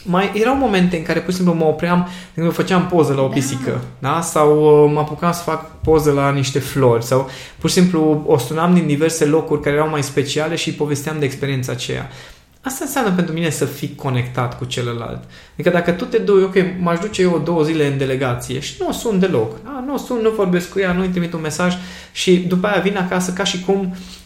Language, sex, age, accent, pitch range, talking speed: Romanian, male, 20-39, native, 130-175 Hz, 230 wpm